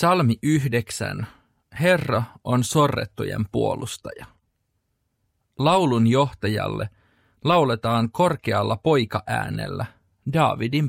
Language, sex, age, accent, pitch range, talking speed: Finnish, male, 40-59, native, 110-140 Hz, 65 wpm